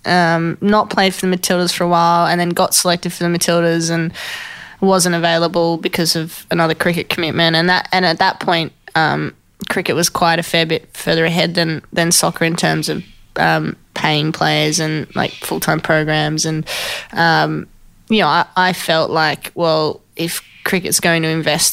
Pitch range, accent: 160-180 Hz, Australian